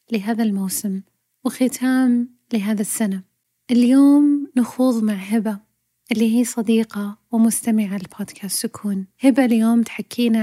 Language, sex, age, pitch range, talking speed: Arabic, female, 30-49, 200-235 Hz, 105 wpm